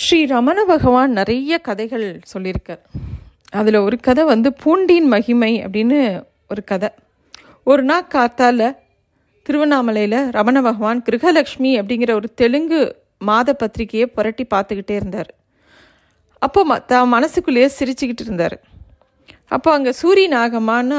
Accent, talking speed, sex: native, 105 wpm, female